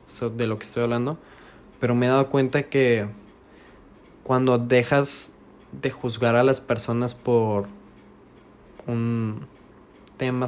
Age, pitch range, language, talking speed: 20-39, 125-150 Hz, Spanish, 120 wpm